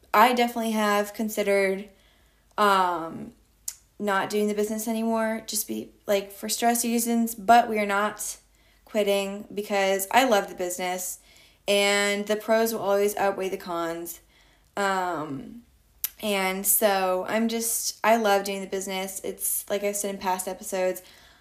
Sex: female